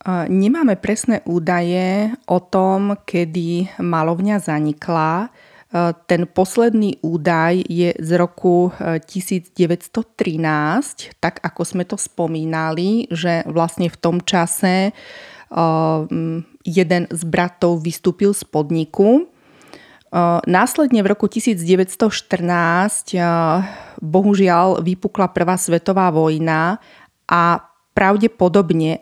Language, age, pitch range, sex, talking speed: Slovak, 30-49, 170-195 Hz, female, 85 wpm